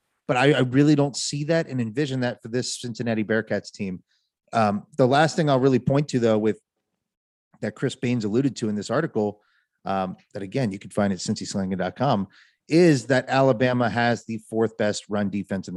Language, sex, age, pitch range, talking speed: English, male, 30-49, 110-130 Hz, 200 wpm